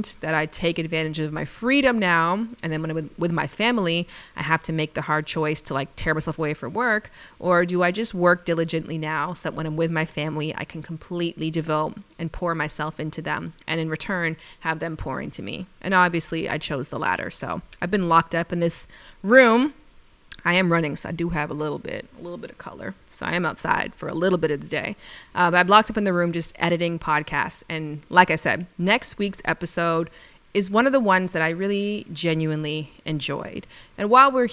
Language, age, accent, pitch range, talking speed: English, 20-39, American, 160-185 Hz, 225 wpm